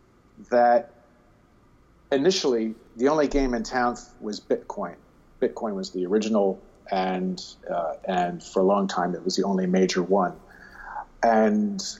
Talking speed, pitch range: 135 wpm, 110-155 Hz